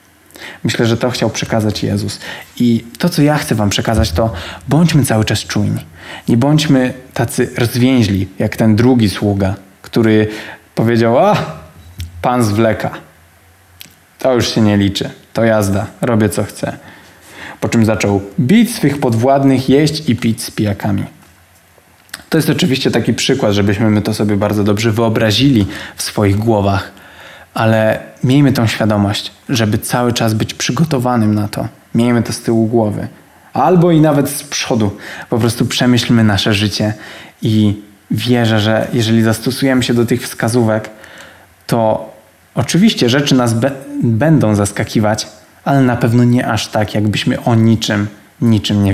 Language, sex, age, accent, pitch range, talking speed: Polish, male, 20-39, native, 105-130 Hz, 145 wpm